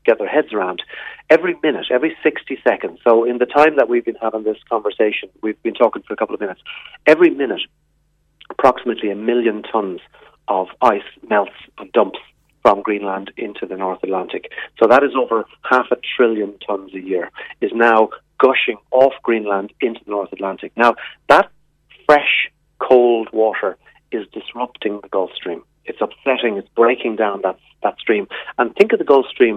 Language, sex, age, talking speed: English, male, 40-59, 175 wpm